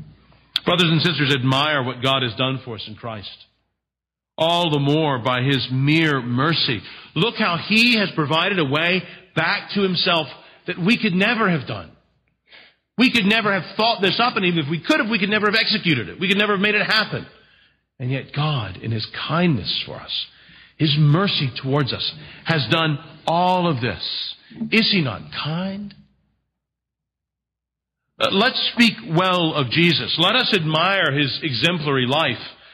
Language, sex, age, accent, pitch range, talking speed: English, male, 50-69, American, 140-195 Hz, 170 wpm